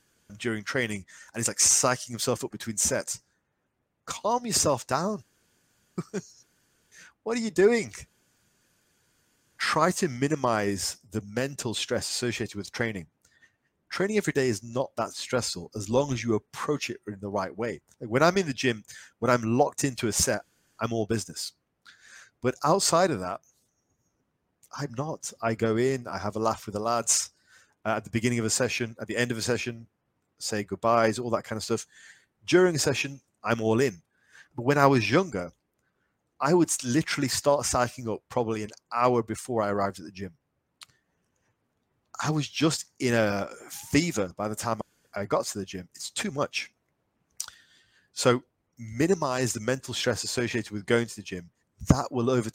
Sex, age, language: male, 30-49, English